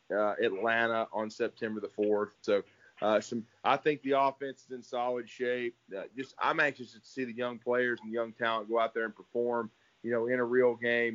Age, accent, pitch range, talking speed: 30-49, American, 115-125 Hz, 220 wpm